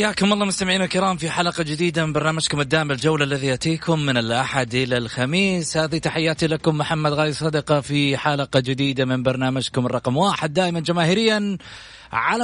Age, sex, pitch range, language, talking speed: 30-49, male, 120-160 Hz, Arabic, 160 wpm